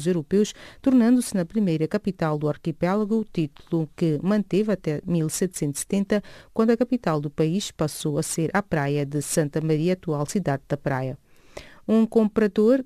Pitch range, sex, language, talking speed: 165-200 Hz, female, English, 150 wpm